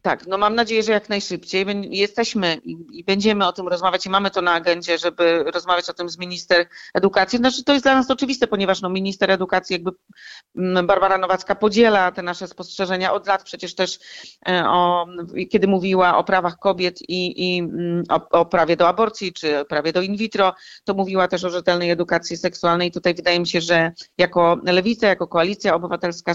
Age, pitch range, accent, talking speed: 40-59, 175-200 Hz, native, 185 wpm